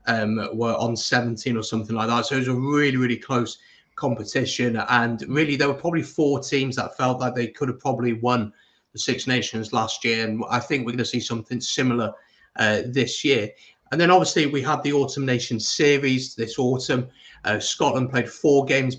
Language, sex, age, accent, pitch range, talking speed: English, male, 30-49, British, 120-140 Hz, 200 wpm